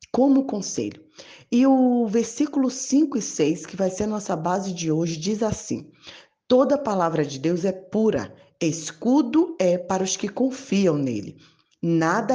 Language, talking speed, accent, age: Portuguese, 155 wpm, Brazilian, 20-39